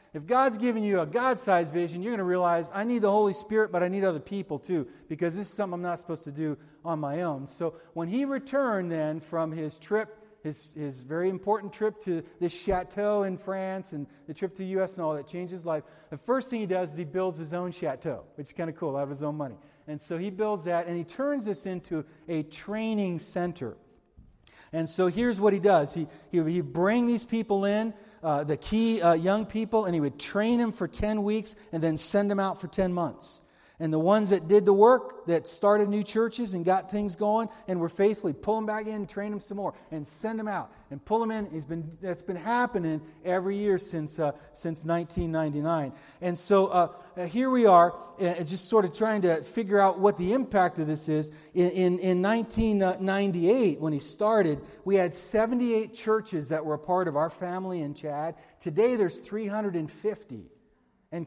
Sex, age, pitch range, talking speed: male, 40-59, 160-210 Hz, 215 wpm